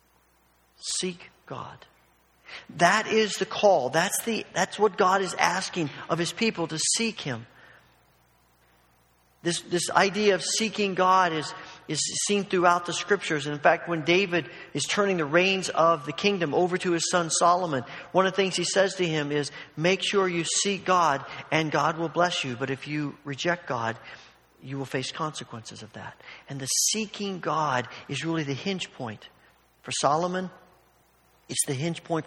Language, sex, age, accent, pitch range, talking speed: English, male, 50-69, American, 130-180 Hz, 175 wpm